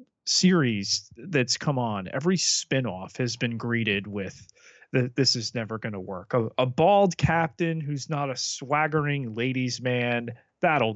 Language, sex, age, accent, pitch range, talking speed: English, male, 30-49, American, 105-145 Hz, 155 wpm